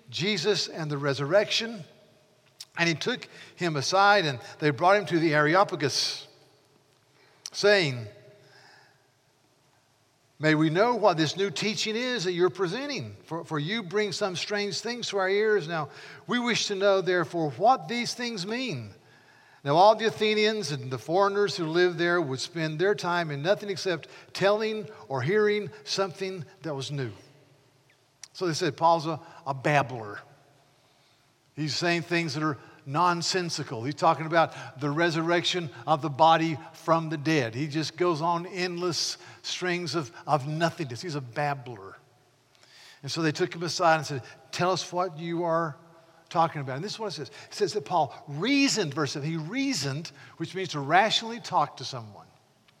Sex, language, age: male, English, 50-69